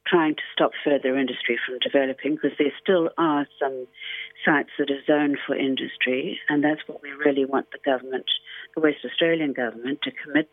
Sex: female